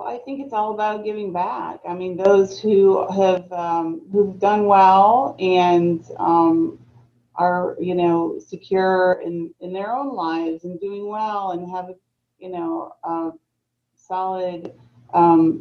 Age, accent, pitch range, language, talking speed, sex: 30-49, American, 160-190 Hz, English, 140 wpm, female